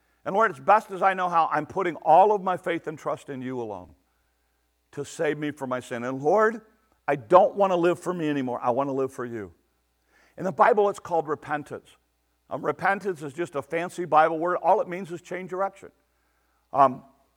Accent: American